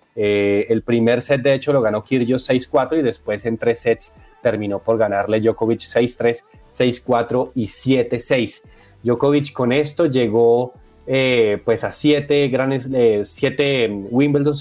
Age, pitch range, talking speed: 20-39, 110-130 Hz, 145 wpm